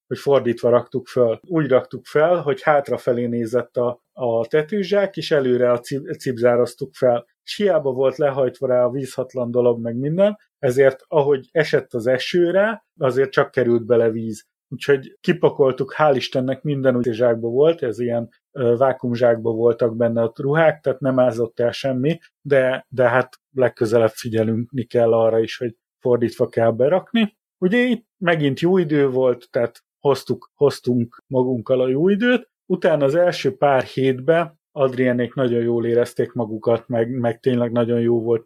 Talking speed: 155 wpm